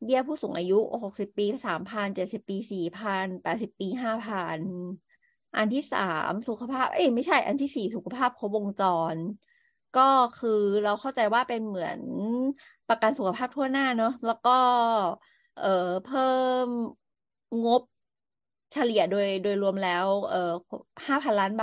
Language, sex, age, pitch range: Thai, female, 30-49, 195-255 Hz